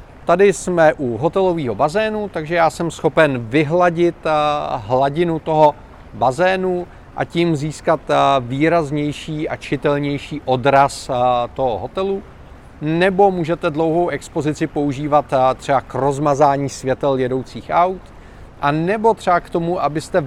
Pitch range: 140-170 Hz